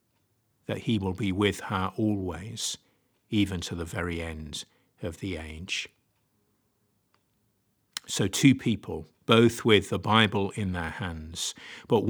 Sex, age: male, 50-69